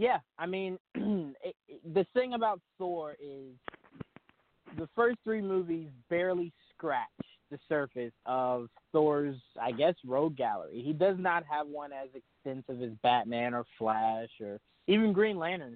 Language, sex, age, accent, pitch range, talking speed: English, male, 20-39, American, 130-170 Hz, 140 wpm